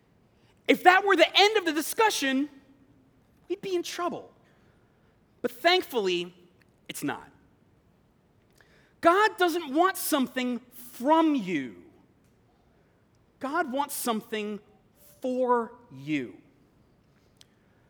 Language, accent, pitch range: English, American, 195-285 Hz